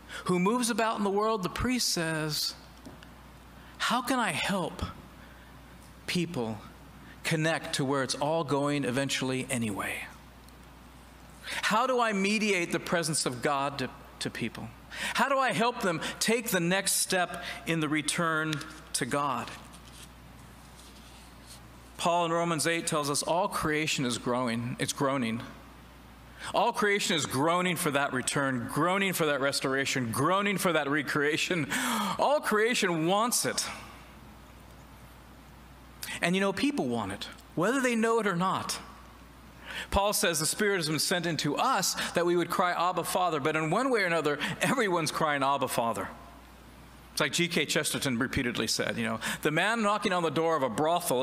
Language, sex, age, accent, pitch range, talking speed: English, male, 40-59, American, 130-185 Hz, 155 wpm